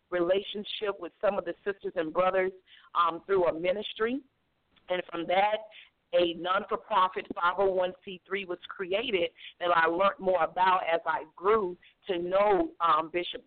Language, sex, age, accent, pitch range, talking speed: English, female, 50-69, American, 175-215 Hz, 145 wpm